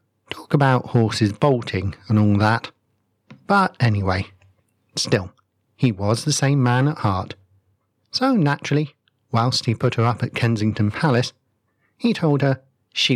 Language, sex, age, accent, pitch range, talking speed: English, male, 40-59, British, 105-130 Hz, 140 wpm